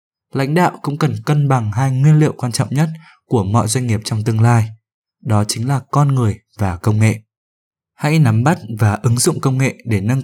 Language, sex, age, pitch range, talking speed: Vietnamese, male, 20-39, 105-135 Hz, 215 wpm